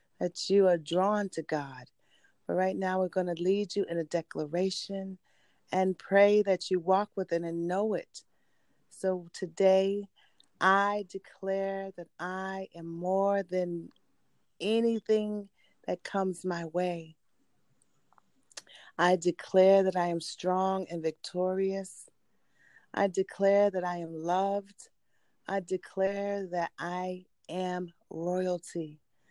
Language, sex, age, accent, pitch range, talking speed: English, female, 30-49, American, 175-195 Hz, 125 wpm